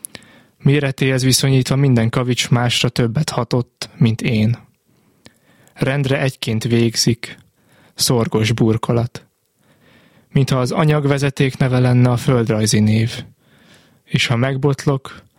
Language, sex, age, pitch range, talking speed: Hungarian, male, 20-39, 120-140 Hz, 100 wpm